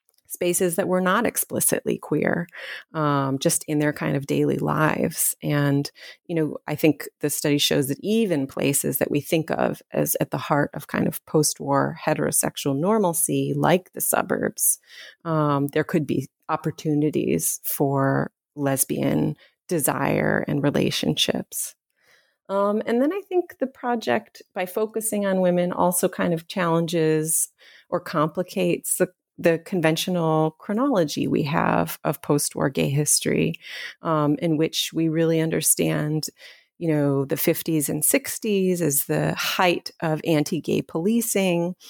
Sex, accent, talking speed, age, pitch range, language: female, American, 140 wpm, 30-49, 145-180 Hz, English